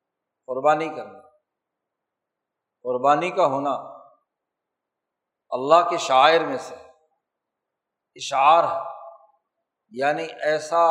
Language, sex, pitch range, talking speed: Urdu, male, 145-170 Hz, 75 wpm